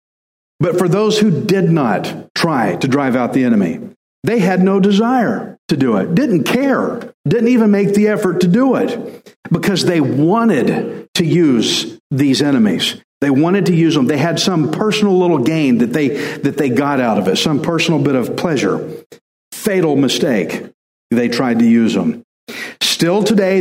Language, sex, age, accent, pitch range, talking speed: English, male, 50-69, American, 140-195 Hz, 175 wpm